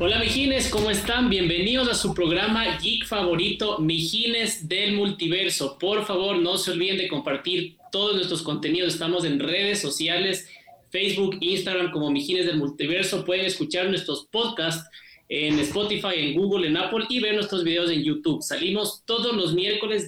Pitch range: 160-200 Hz